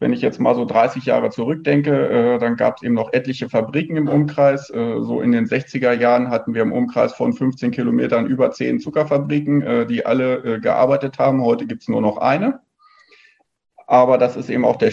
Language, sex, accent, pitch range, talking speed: German, male, German, 125-155 Hz, 210 wpm